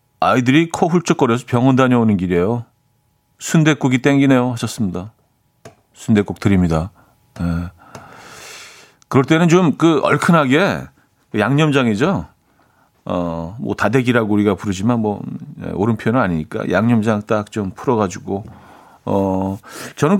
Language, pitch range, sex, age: Korean, 95-140 Hz, male, 40-59